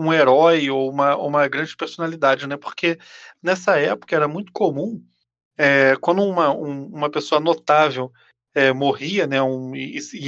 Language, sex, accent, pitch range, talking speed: Portuguese, male, Brazilian, 135-175 Hz, 160 wpm